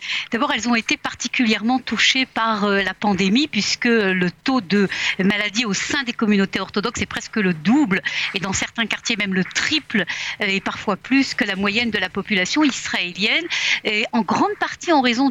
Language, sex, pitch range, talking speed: Russian, female, 200-250 Hz, 180 wpm